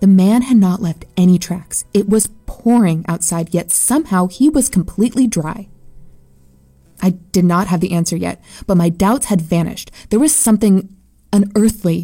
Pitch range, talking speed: 175-220 Hz, 165 wpm